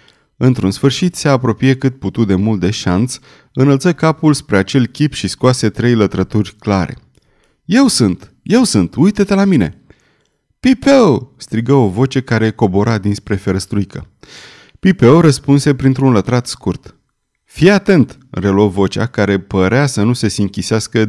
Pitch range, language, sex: 105-140 Hz, Romanian, male